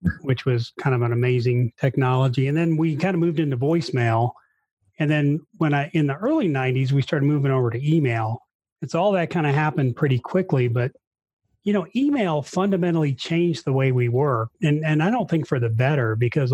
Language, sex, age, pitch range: English, male, 30-49, 125-160 Hz